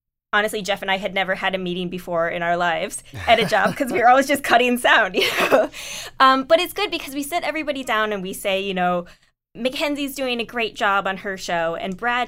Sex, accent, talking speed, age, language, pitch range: female, American, 230 wpm, 20-39, English, 175-220 Hz